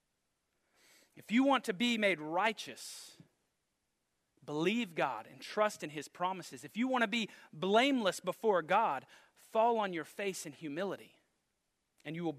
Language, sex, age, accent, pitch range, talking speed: English, male, 30-49, American, 170-235 Hz, 150 wpm